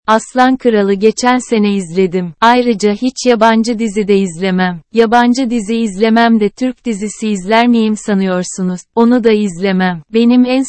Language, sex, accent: Turkish, female, native